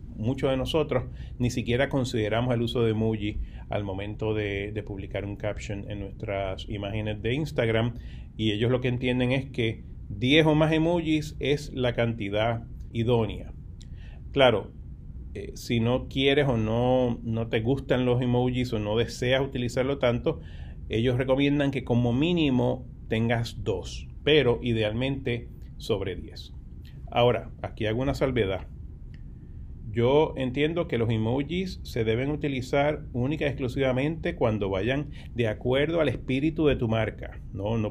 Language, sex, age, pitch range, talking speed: Spanish, male, 30-49, 105-130 Hz, 145 wpm